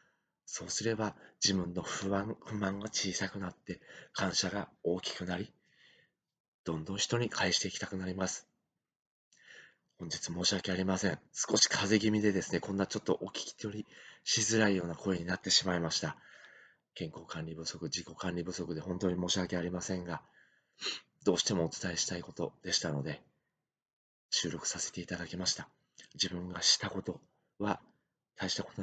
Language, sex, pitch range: Japanese, male, 90-105 Hz